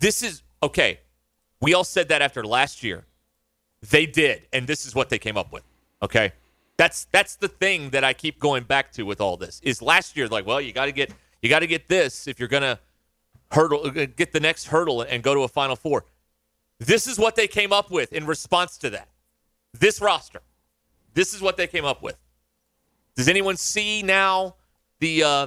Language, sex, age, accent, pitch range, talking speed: English, male, 30-49, American, 125-175 Hz, 205 wpm